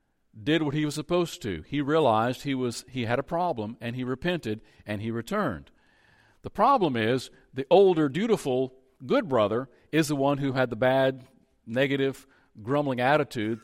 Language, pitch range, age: English, 120-155 Hz, 50-69